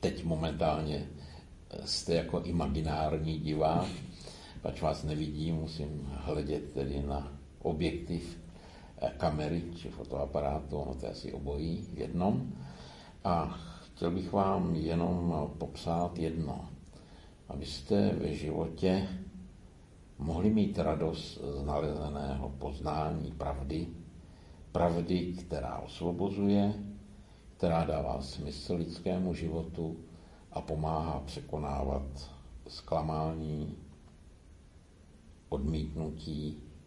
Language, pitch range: Slovak, 75-85 Hz